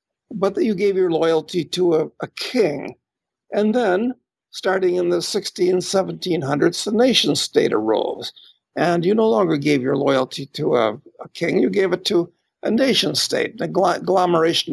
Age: 60-79